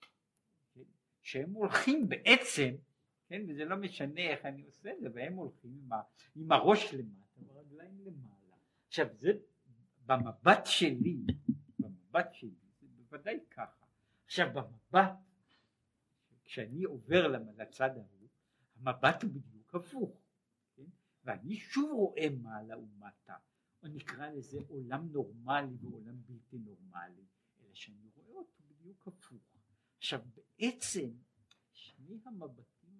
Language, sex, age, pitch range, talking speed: Hebrew, male, 60-79, 120-180 Hz, 120 wpm